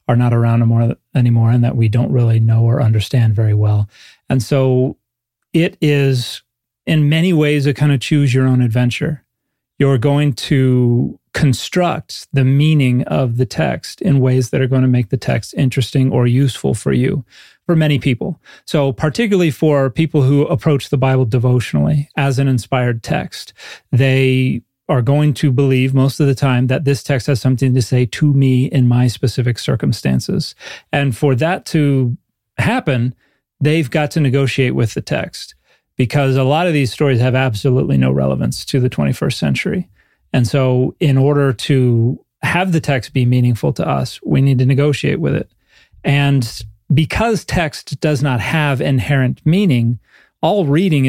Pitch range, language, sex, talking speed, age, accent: 125-145 Hz, English, male, 170 wpm, 30-49, American